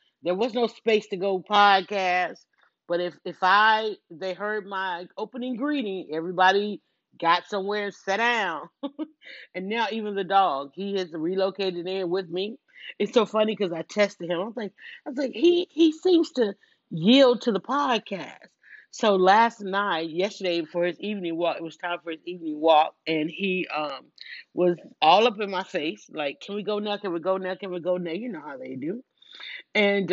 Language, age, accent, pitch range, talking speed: English, 30-49, American, 175-230 Hz, 190 wpm